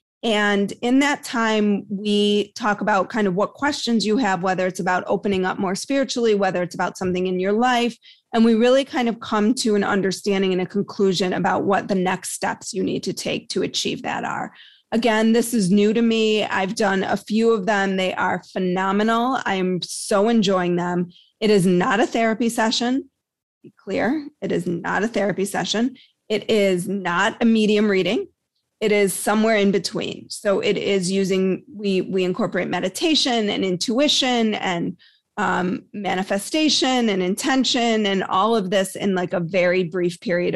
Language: English